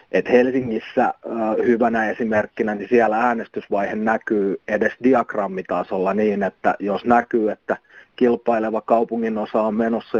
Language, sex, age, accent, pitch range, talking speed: Finnish, male, 30-49, native, 105-120 Hz, 110 wpm